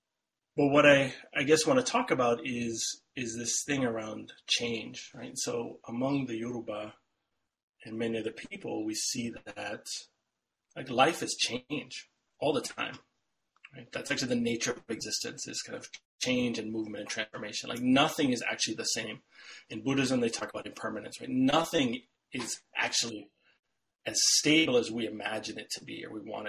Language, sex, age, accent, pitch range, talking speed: English, male, 30-49, American, 115-170 Hz, 175 wpm